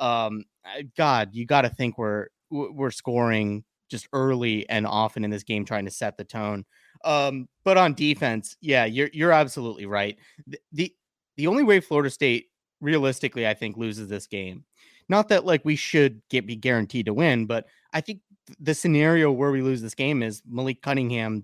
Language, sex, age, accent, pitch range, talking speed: English, male, 30-49, American, 110-150 Hz, 185 wpm